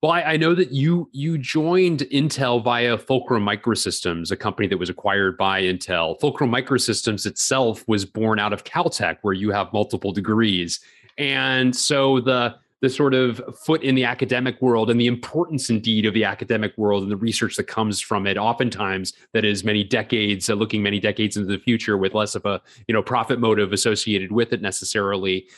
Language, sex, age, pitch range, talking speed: English, male, 30-49, 105-130 Hz, 190 wpm